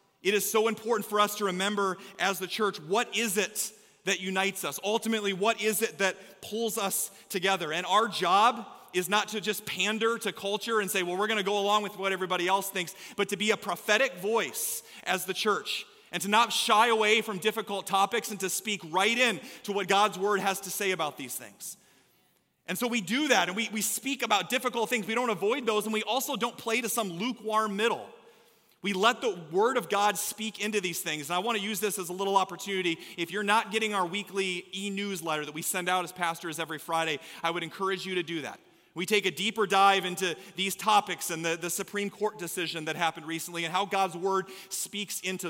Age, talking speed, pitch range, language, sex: 30-49, 225 wpm, 185-215 Hz, English, male